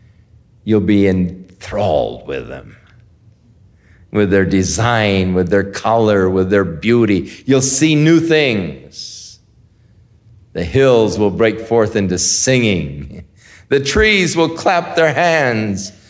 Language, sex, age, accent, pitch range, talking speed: English, male, 50-69, American, 95-125 Hz, 115 wpm